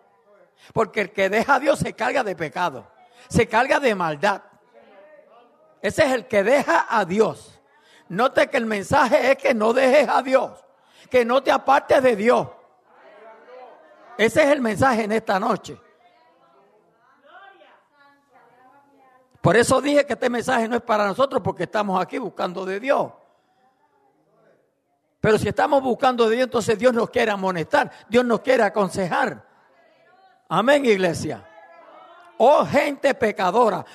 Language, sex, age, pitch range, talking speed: English, male, 50-69, 190-265 Hz, 140 wpm